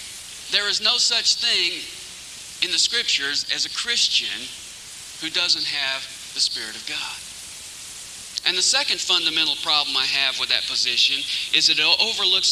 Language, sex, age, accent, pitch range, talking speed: English, male, 40-59, American, 175-230 Hz, 155 wpm